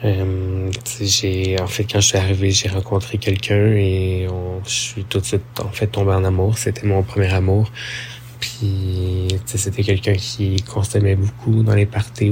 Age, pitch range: 20-39, 95-115 Hz